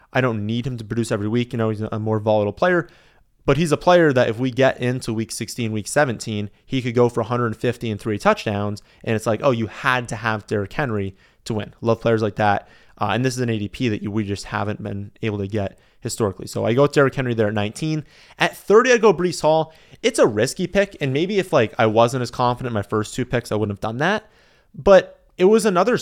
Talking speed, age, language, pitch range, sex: 250 wpm, 30-49, English, 110-140 Hz, male